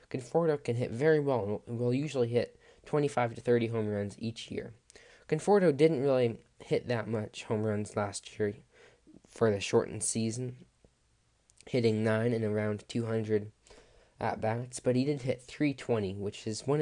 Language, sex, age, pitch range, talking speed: English, male, 20-39, 105-125 Hz, 155 wpm